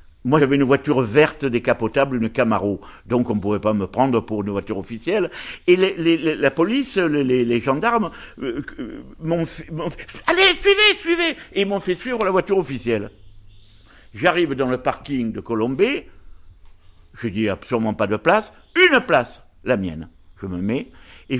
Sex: male